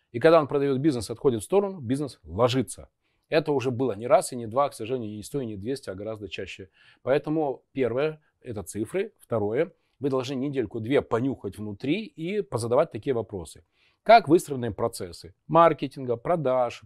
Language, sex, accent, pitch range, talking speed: Russian, male, native, 105-155 Hz, 165 wpm